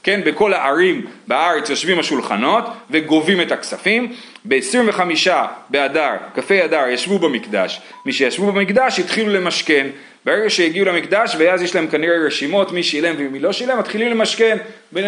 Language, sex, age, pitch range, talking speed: Hebrew, male, 30-49, 175-235 Hz, 140 wpm